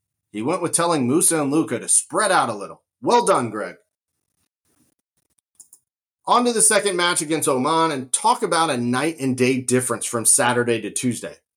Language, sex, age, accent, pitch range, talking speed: English, male, 40-59, American, 130-190 Hz, 175 wpm